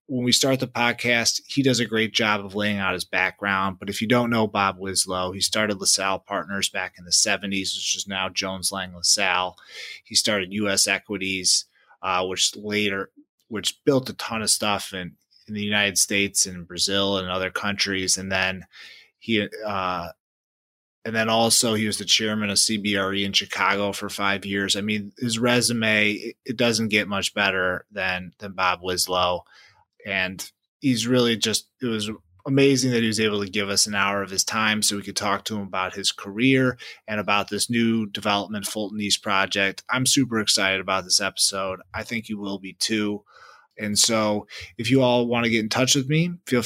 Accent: American